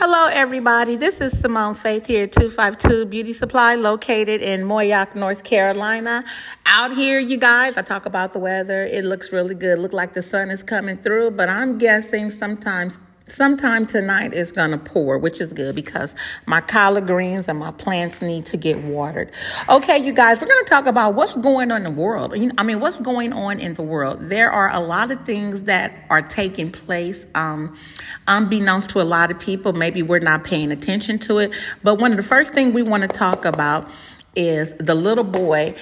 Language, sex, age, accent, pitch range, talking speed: English, female, 40-59, American, 175-225 Hz, 205 wpm